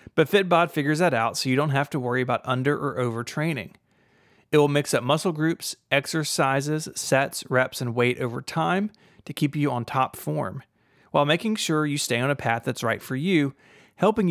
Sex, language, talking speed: male, English, 200 wpm